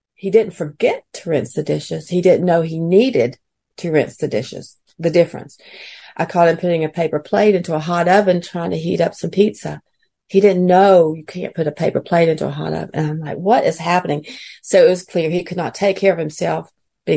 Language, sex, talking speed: English, female, 230 wpm